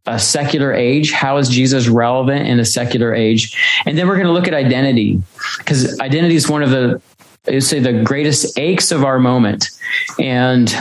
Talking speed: 185 wpm